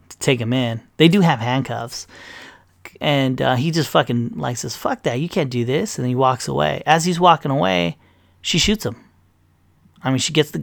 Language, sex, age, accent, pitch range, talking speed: English, male, 30-49, American, 115-160 Hz, 205 wpm